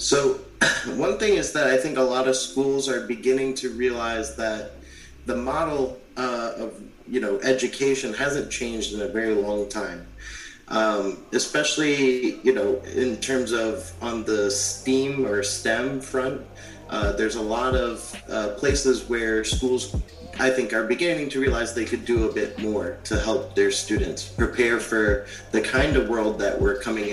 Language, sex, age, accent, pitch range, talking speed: English, male, 30-49, American, 105-130 Hz, 170 wpm